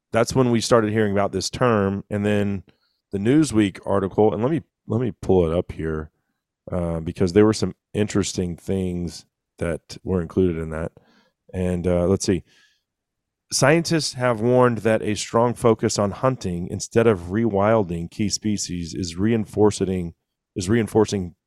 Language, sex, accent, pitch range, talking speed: English, male, American, 95-130 Hz, 155 wpm